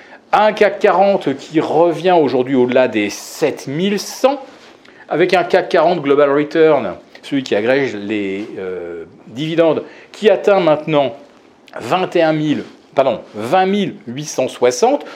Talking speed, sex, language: 105 wpm, male, French